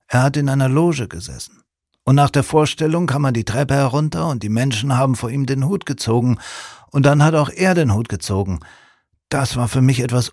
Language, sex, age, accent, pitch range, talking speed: German, male, 50-69, German, 100-140 Hz, 215 wpm